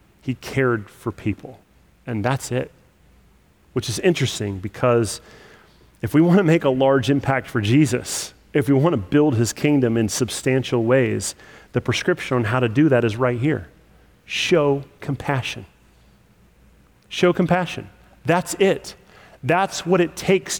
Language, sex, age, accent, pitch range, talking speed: English, male, 30-49, American, 120-180 Hz, 150 wpm